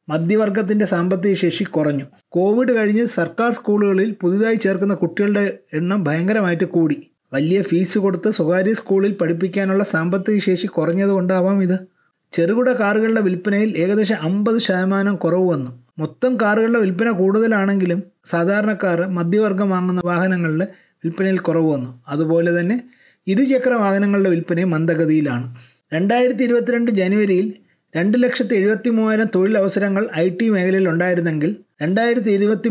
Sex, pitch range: male, 175-215 Hz